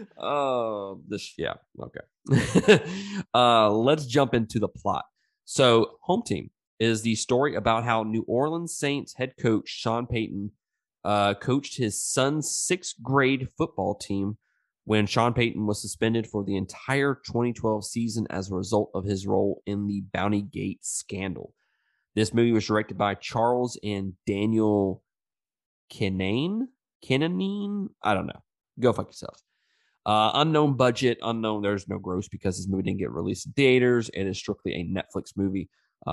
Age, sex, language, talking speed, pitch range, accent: 20-39, male, English, 155 wpm, 100-125 Hz, American